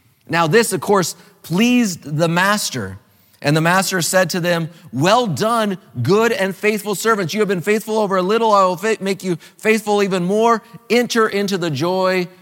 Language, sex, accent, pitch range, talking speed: English, male, American, 120-175 Hz, 180 wpm